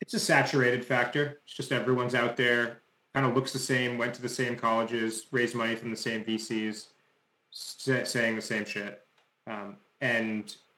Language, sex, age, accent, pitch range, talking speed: English, male, 30-49, American, 115-130 Hz, 175 wpm